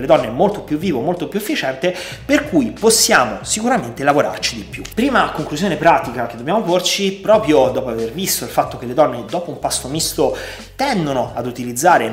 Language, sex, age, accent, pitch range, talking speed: Italian, male, 30-49, native, 125-180 Hz, 180 wpm